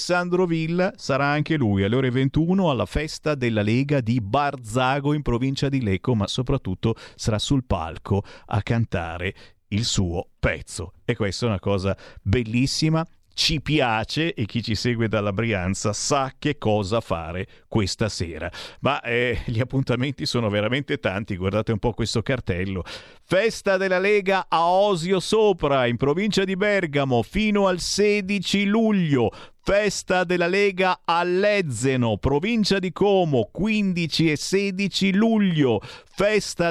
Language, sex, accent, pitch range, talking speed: Italian, male, native, 115-185 Hz, 140 wpm